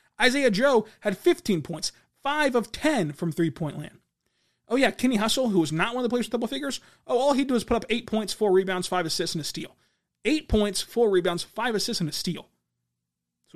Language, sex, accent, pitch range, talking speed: English, male, American, 150-210 Hz, 230 wpm